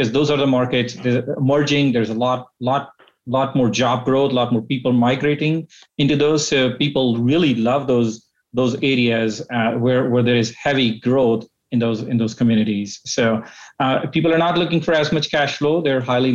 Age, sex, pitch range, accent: 30-49, male, 120-145 Hz, Indian